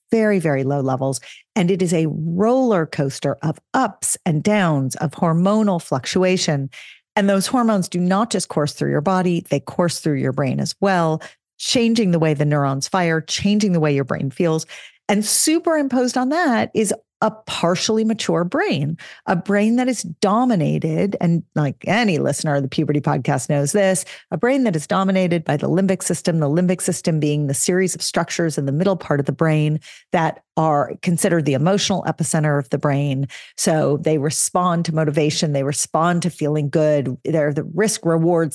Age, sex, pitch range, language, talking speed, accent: 40-59, female, 150-195 Hz, English, 180 wpm, American